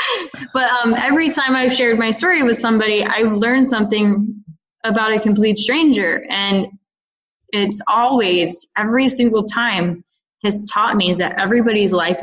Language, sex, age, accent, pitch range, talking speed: English, female, 20-39, American, 185-220 Hz, 140 wpm